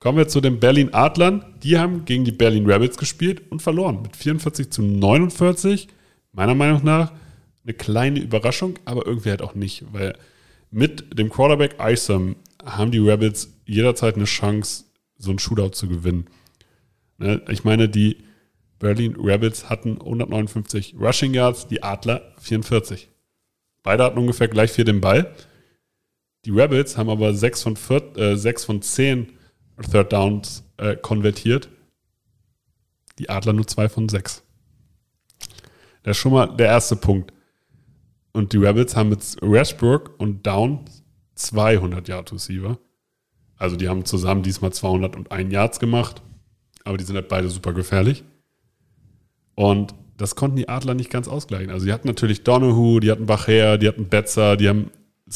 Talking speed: 145 wpm